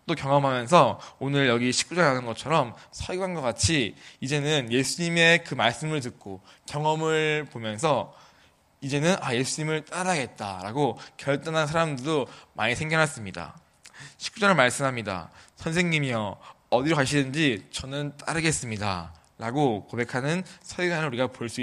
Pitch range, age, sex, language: 120-160 Hz, 20-39, male, Korean